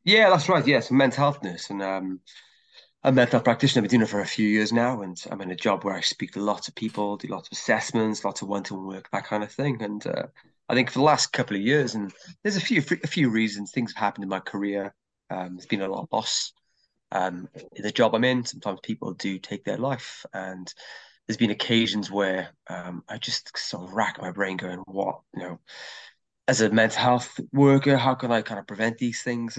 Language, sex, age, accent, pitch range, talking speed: English, male, 20-39, British, 100-135 Hz, 245 wpm